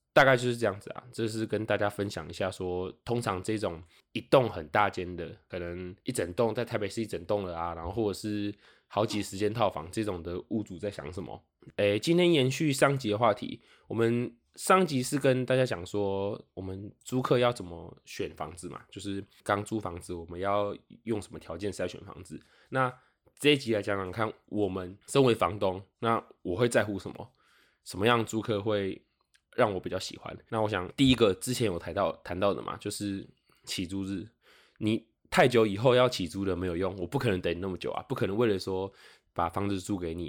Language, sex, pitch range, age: Chinese, male, 95-115 Hz, 20-39